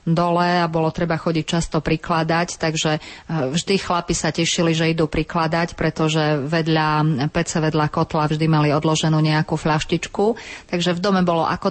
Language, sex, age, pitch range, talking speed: Slovak, female, 30-49, 160-180 Hz, 155 wpm